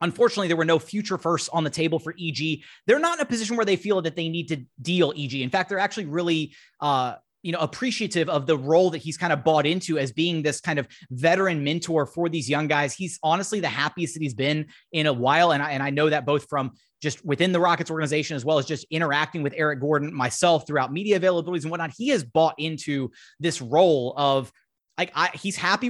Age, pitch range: 20-39, 145-180 Hz